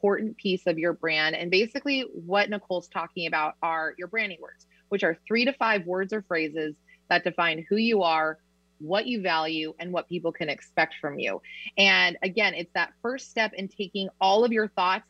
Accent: American